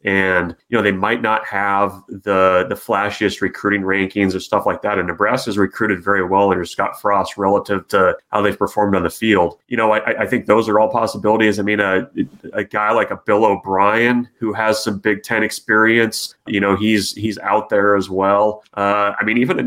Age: 30-49